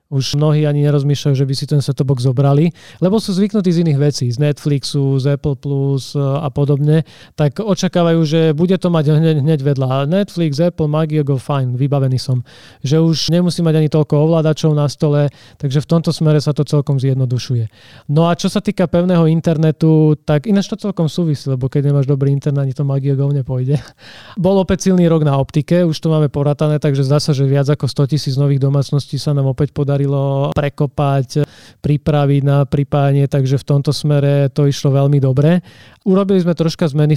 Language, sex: Slovak, male